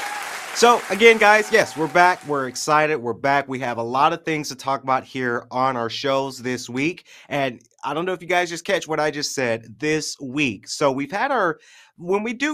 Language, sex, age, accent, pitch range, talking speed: English, male, 30-49, American, 125-160 Hz, 225 wpm